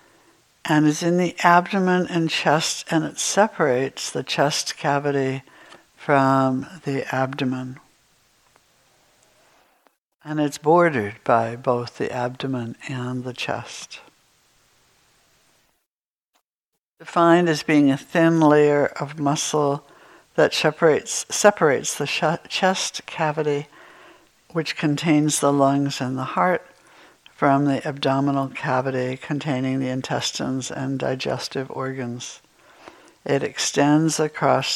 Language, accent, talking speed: English, American, 105 wpm